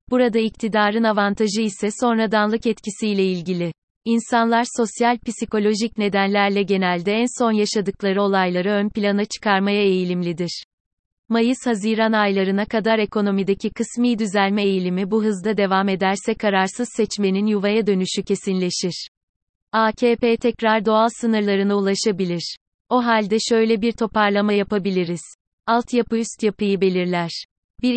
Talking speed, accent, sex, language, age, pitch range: 110 wpm, native, female, Turkish, 30-49, 195-225 Hz